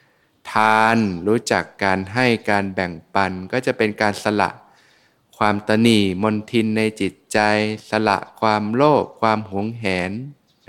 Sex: male